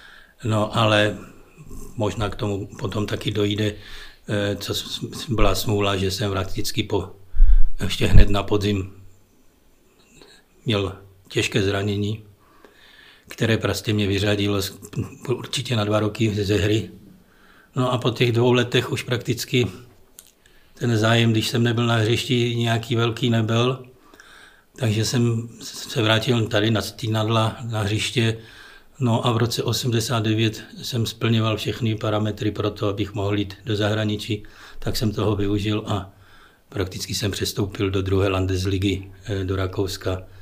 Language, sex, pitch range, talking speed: Czech, male, 100-115 Hz, 130 wpm